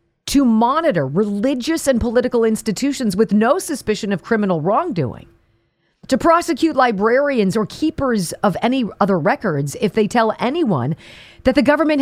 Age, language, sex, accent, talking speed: 40-59, English, female, American, 140 wpm